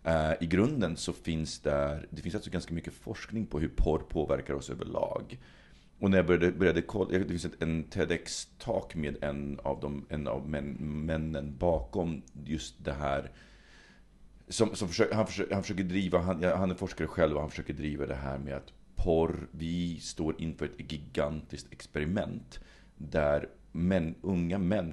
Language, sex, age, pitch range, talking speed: Swedish, male, 40-59, 75-90 Hz, 165 wpm